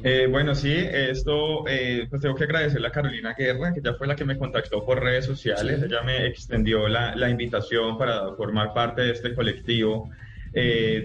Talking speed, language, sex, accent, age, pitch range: 190 wpm, Spanish, male, Colombian, 20-39, 110-125 Hz